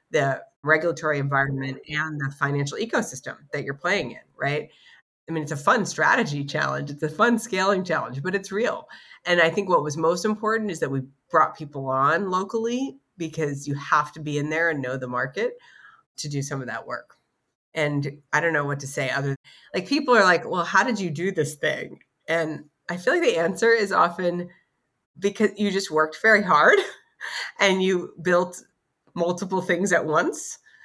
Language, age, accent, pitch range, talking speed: English, 30-49, American, 150-190 Hz, 190 wpm